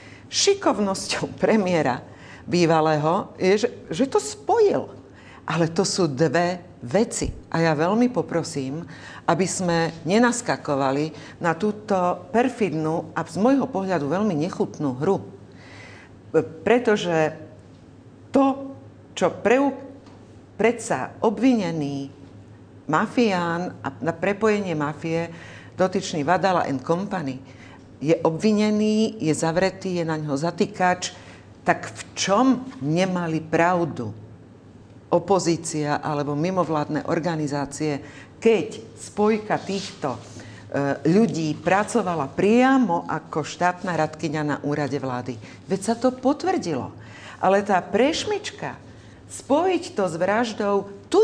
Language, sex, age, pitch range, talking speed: Czech, female, 50-69, 150-205 Hz, 100 wpm